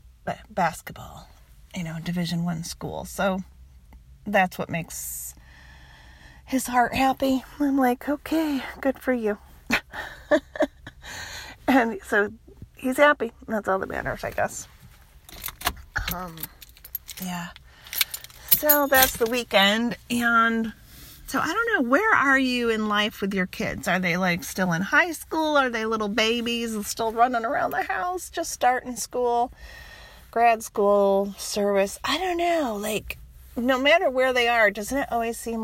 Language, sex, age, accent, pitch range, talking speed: English, female, 40-59, American, 185-245 Hz, 140 wpm